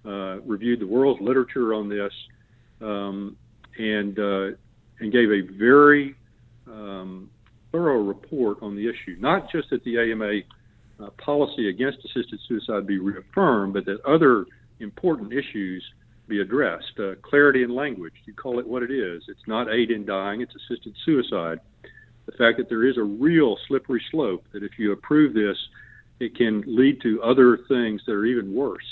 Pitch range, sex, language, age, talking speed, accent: 105-130 Hz, male, English, 50-69, 170 wpm, American